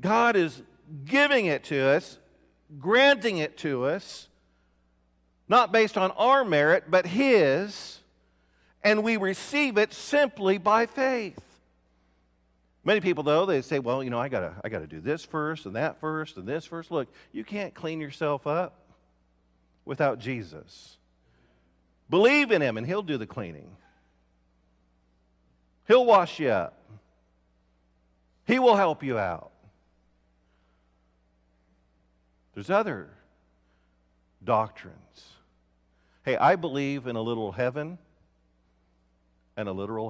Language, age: English, 50-69